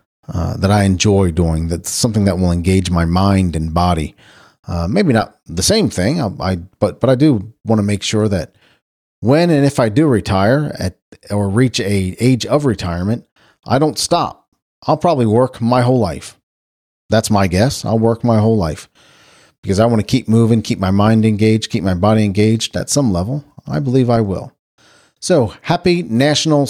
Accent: American